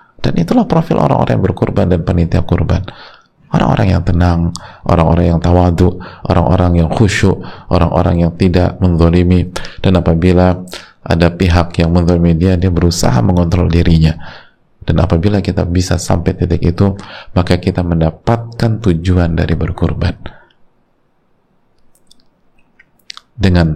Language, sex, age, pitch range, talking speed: Indonesian, male, 30-49, 85-95 Hz, 120 wpm